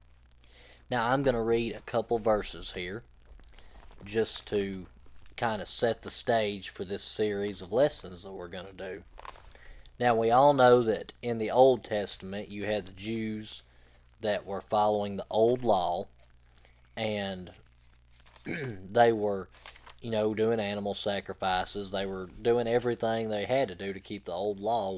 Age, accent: 20-39, American